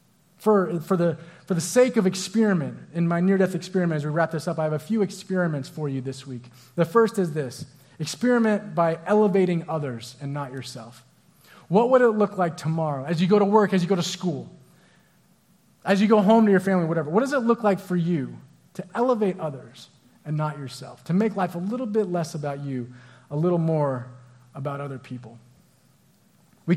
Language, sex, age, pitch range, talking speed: English, male, 30-49, 165-225 Hz, 200 wpm